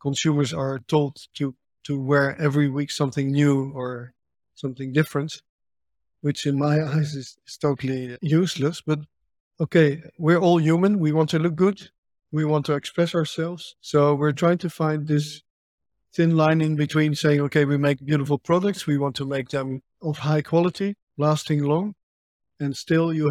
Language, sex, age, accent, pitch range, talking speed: English, male, 50-69, Dutch, 135-155 Hz, 165 wpm